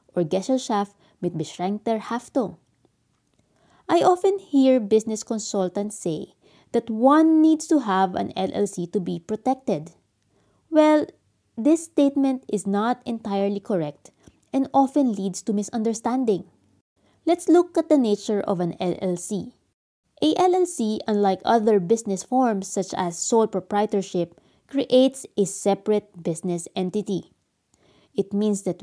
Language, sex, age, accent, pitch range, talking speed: English, female, 20-39, Filipino, 185-255 Hz, 125 wpm